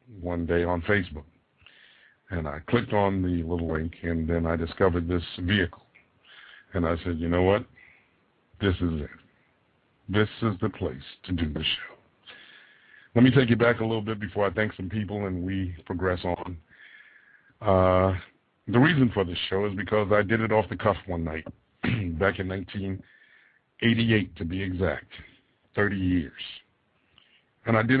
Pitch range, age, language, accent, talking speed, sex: 85-105 Hz, 60-79, English, American, 165 wpm, male